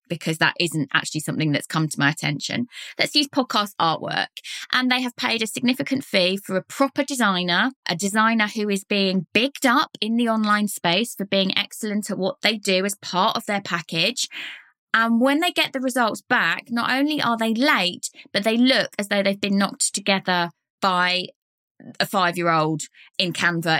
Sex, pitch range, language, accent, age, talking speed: female, 190-245 Hz, English, British, 20-39, 185 wpm